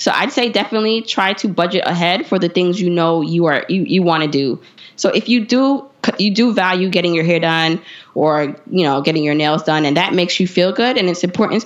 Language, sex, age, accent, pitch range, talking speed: English, female, 20-39, American, 170-225 Hz, 240 wpm